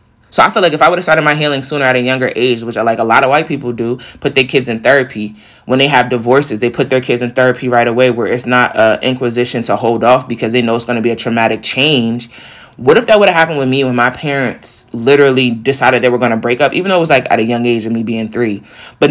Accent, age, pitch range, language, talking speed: American, 20-39, 120-140 Hz, English, 290 wpm